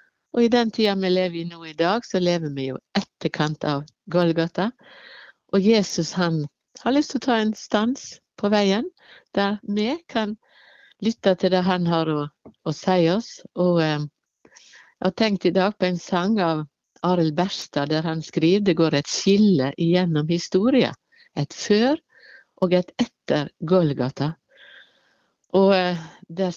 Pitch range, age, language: 160-215 Hz, 60-79, English